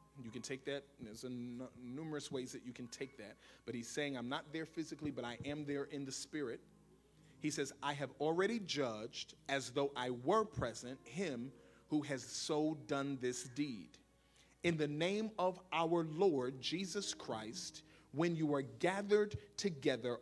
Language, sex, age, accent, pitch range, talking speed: English, male, 40-59, American, 140-180 Hz, 170 wpm